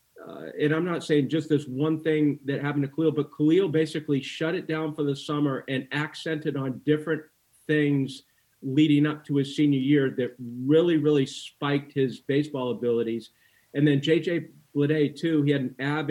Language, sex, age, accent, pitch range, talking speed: English, male, 40-59, American, 130-155 Hz, 185 wpm